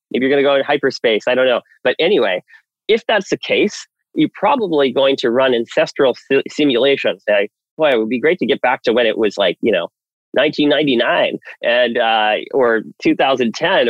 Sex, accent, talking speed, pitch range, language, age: male, American, 180 wpm, 125-205 Hz, English, 30-49